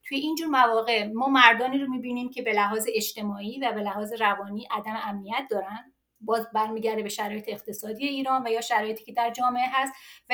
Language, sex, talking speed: English, female, 185 wpm